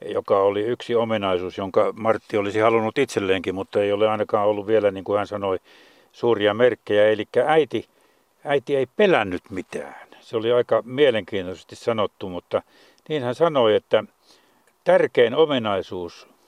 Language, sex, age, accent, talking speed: Finnish, male, 60-79, native, 140 wpm